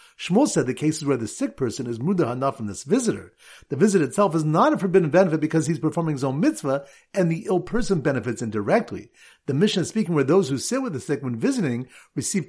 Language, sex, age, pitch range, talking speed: English, male, 50-69, 135-195 Hz, 230 wpm